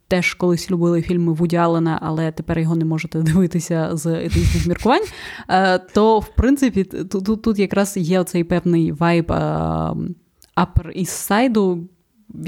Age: 20-39